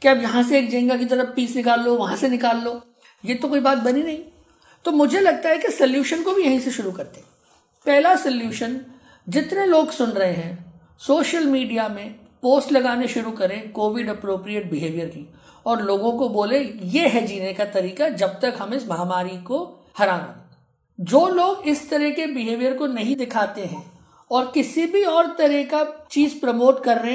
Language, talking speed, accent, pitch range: Hindi, 190 wpm, native, 220-295 Hz